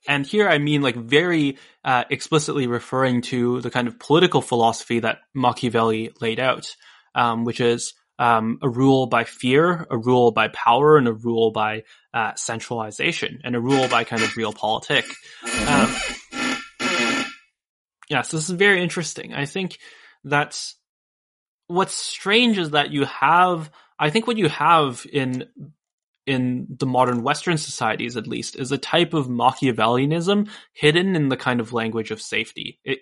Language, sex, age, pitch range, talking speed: English, male, 10-29, 120-155 Hz, 160 wpm